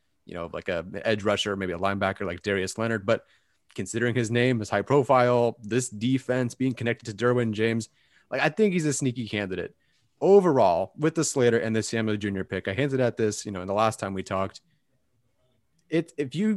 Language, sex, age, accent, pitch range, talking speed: English, male, 30-49, American, 110-135 Hz, 205 wpm